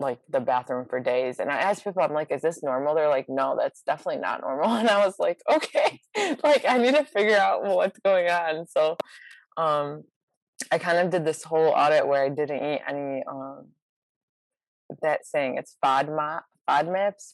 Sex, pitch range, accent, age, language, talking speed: female, 135-170 Hz, American, 20-39, English, 190 wpm